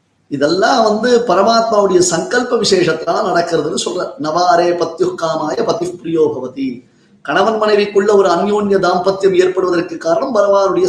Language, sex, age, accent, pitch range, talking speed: Tamil, male, 30-49, native, 170-230 Hz, 110 wpm